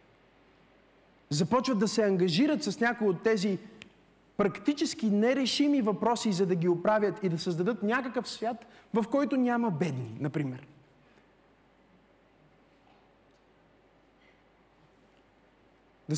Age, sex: 30-49, male